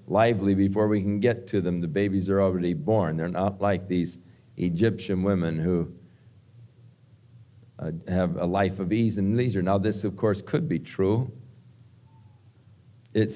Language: English